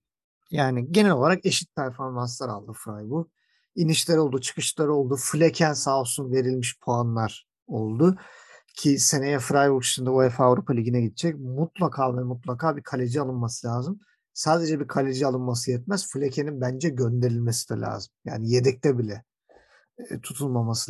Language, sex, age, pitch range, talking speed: Turkish, male, 50-69, 120-155 Hz, 130 wpm